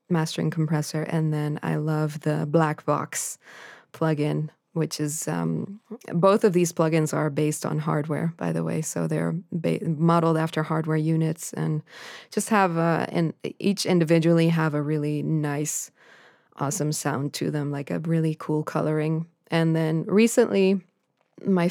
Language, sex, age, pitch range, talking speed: English, female, 20-39, 155-175 Hz, 150 wpm